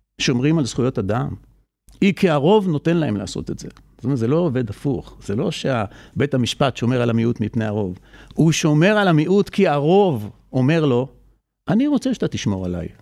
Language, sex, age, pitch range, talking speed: Hebrew, male, 50-69, 125-175 Hz, 185 wpm